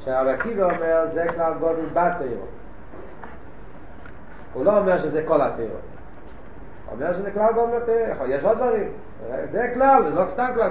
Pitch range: 150-200 Hz